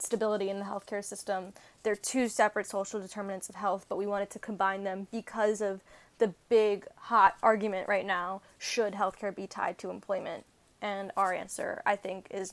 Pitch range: 200-240 Hz